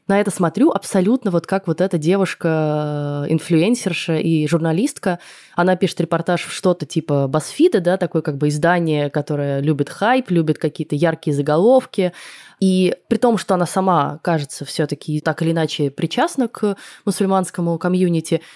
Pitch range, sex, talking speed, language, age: 160-195 Hz, female, 150 wpm, Russian, 20-39